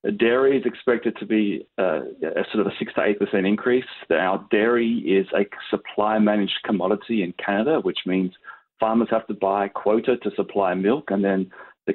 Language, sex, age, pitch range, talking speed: English, male, 30-49, 100-115 Hz, 185 wpm